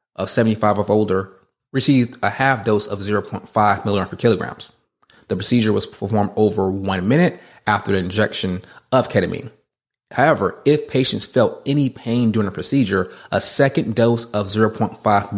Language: English